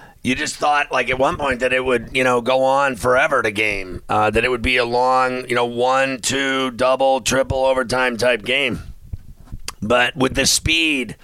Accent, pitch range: American, 120-135 Hz